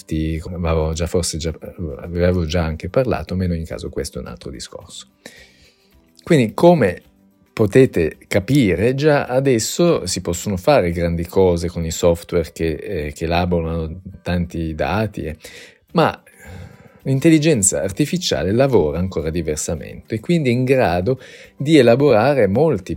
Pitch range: 85-125 Hz